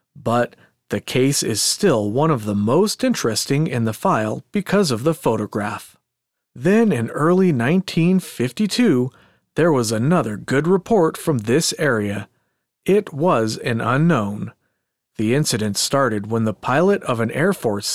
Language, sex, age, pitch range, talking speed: English, male, 40-59, 110-170 Hz, 145 wpm